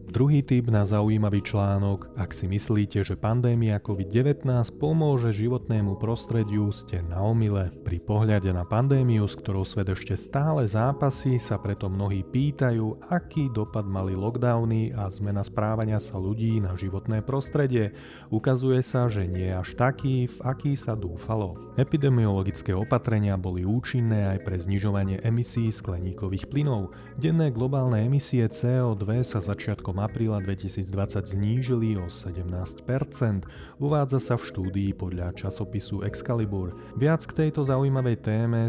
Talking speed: 130 wpm